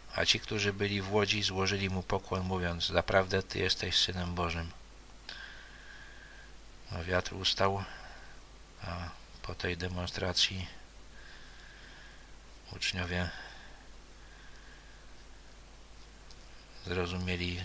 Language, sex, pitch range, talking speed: Polish, male, 90-95 Hz, 80 wpm